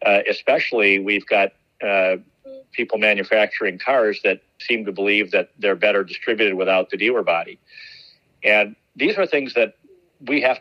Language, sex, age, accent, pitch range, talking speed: English, male, 50-69, American, 100-120 Hz, 155 wpm